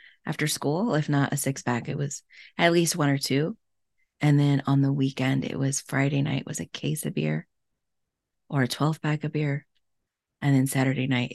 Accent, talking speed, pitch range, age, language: American, 205 wpm, 135-155 Hz, 30-49, English